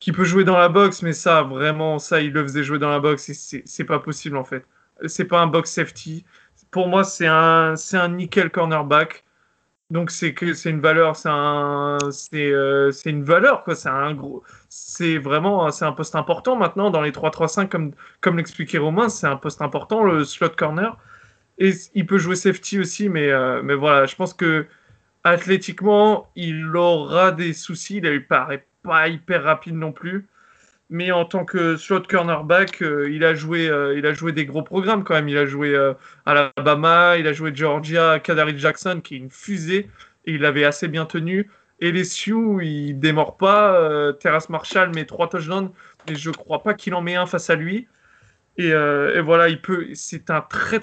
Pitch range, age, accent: 150-180 Hz, 20-39, French